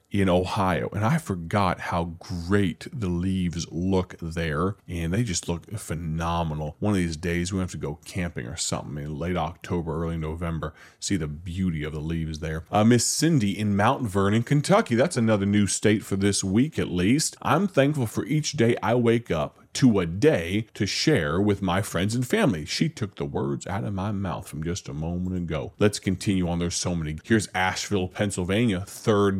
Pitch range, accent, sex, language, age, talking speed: 90-120 Hz, American, male, English, 30-49, 195 wpm